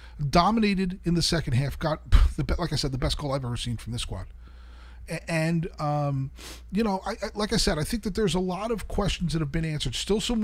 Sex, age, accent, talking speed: male, 40-59, American, 230 wpm